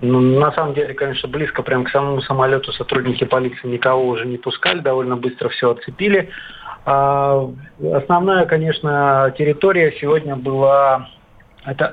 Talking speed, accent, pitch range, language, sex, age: 135 wpm, native, 130-150 Hz, Russian, male, 40-59